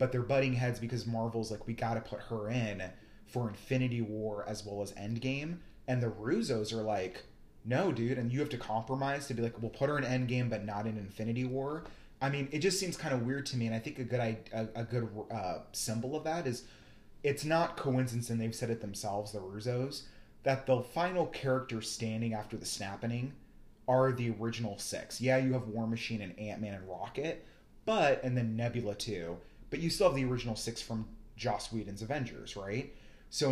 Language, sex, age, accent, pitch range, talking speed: English, male, 30-49, American, 110-130 Hz, 210 wpm